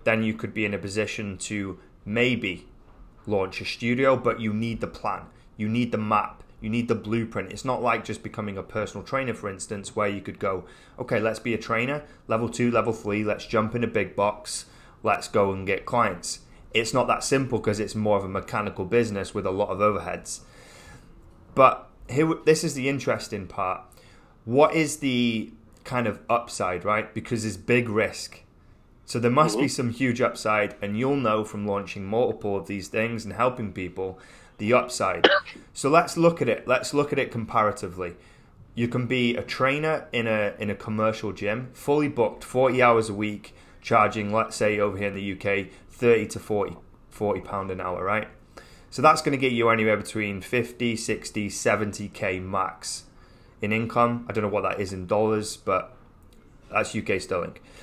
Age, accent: 20-39, British